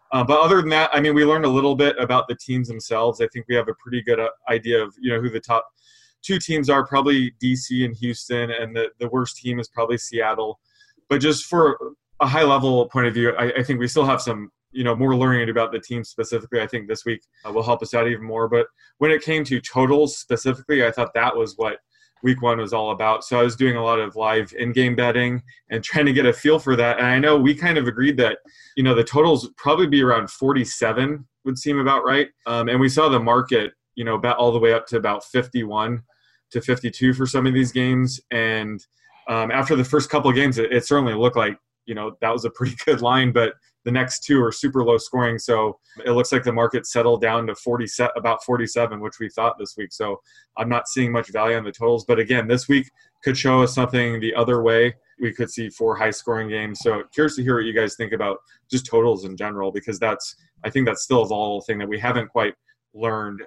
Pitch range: 115-130 Hz